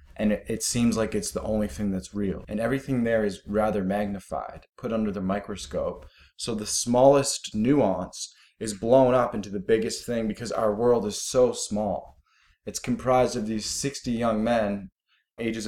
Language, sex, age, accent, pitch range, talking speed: English, male, 20-39, American, 100-120 Hz, 170 wpm